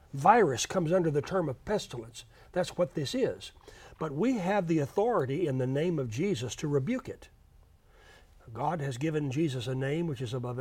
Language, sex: English, male